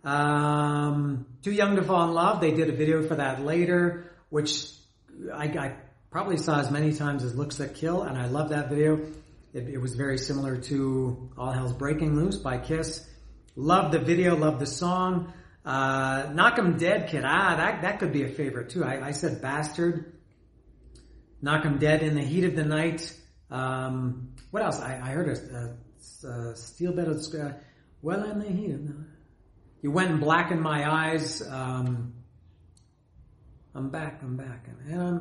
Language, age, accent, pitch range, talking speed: English, 40-59, American, 125-160 Hz, 185 wpm